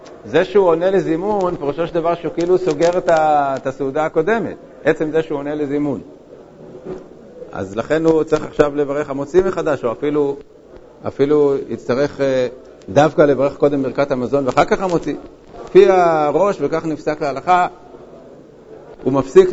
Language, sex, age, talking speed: Hebrew, male, 50-69, 150 wpm